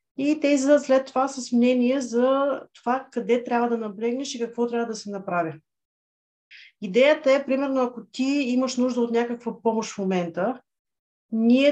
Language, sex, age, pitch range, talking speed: Bulgarian, female, 30-49, 220-260 Hz, 170 wpm